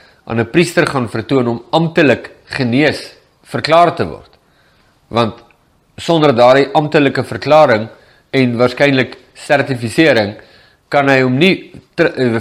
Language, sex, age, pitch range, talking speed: English, male, 50-69, 120-150 Hz, 120 wpm